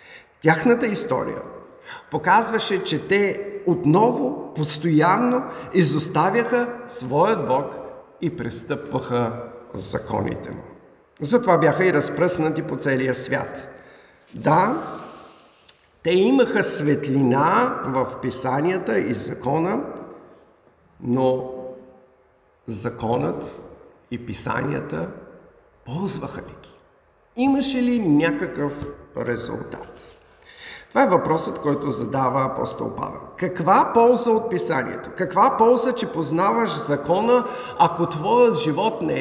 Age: 50-69